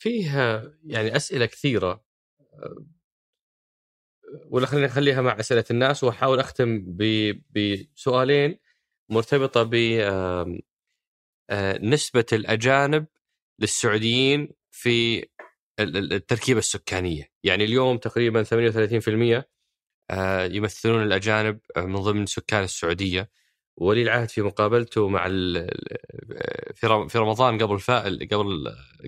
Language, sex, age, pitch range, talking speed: Arabic, male, 20-39, 105-125 Hz, 80 wpm